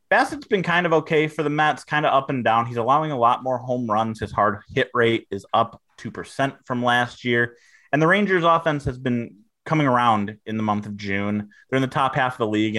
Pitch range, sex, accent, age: 105-135 Hz, male, American, 30-49